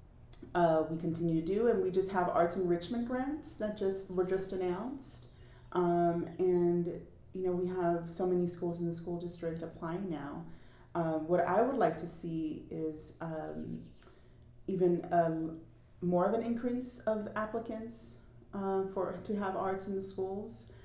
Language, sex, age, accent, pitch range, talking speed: English, female, 30-49, American, 155-180 Hz, 165 wpm